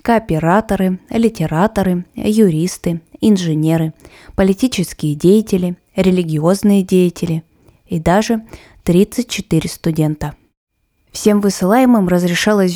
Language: Russian